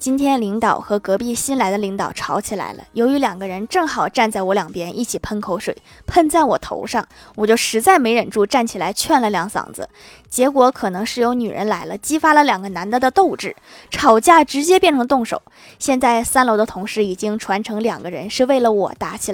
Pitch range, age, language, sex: 205-275 Hz, 20-39, Chinese, female